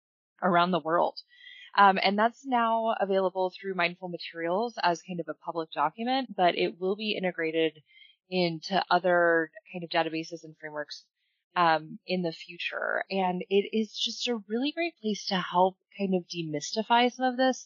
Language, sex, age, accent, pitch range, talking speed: English, female, 20-39, American, 165-205 Hz, 165 wpm